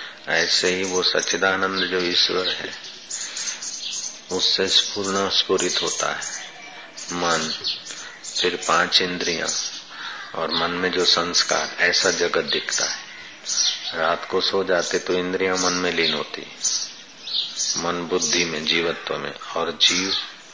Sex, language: male, Hindi